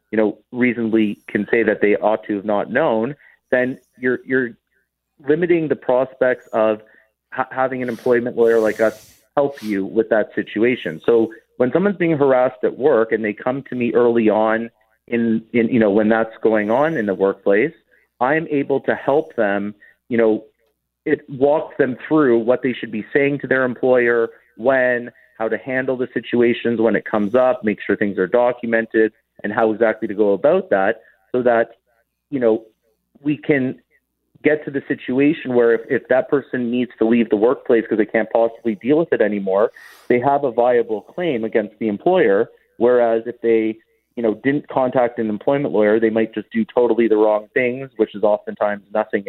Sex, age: male, 30-49